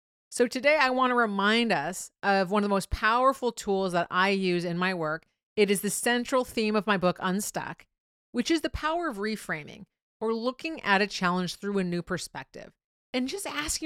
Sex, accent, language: female, American, English